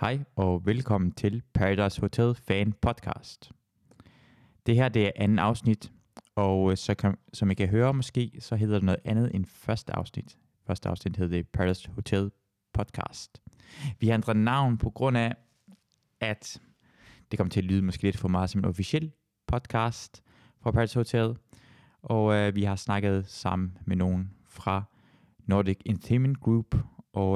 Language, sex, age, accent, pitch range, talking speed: Danish, male, 20-39, native, 95-120 Hz, 165 wpm